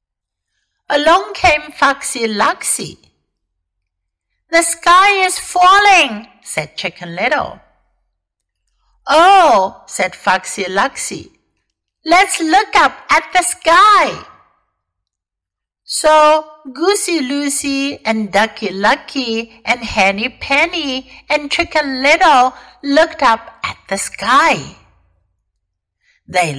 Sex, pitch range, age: female, 195-320 Hz, 60-79